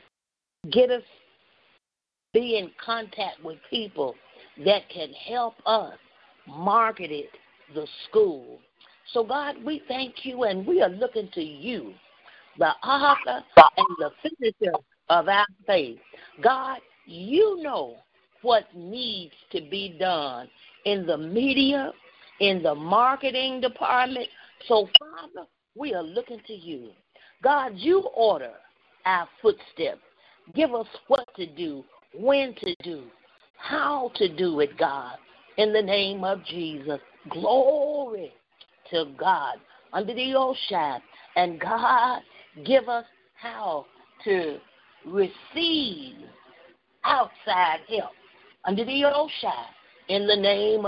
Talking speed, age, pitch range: 120 wpm, 50-69, 185-265 Hz